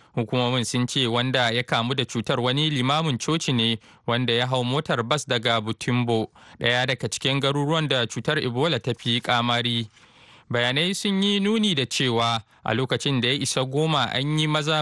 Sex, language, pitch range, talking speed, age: male, English, 120-155 Hz, 140 wpm, 20-39